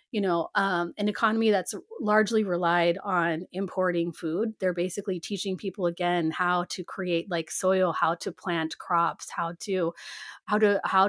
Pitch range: 175-210 Hz